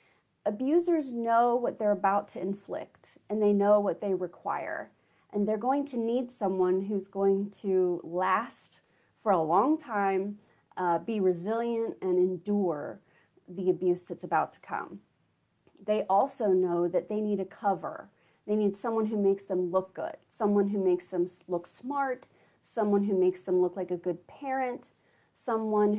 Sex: female